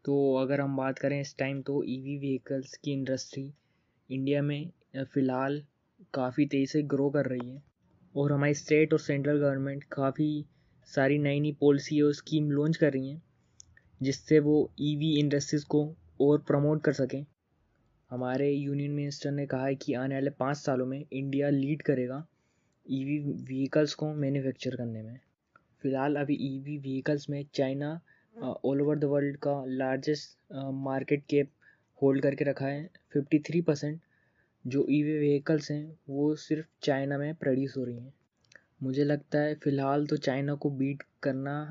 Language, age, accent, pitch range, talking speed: Hindi, 20-39, native, 135-150 Hz, 160 wpm